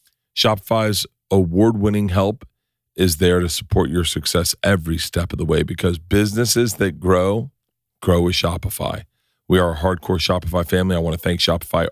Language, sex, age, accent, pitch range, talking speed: English, male, 40-59, American, 90-115 Hz, 160 wpm